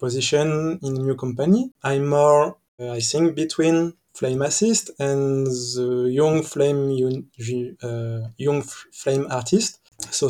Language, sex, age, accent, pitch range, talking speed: English, male, 20-39, French, 125-150 Hz, 135 wpm